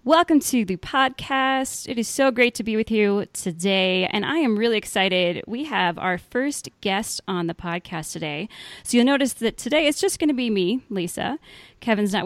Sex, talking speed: female, 200 wpm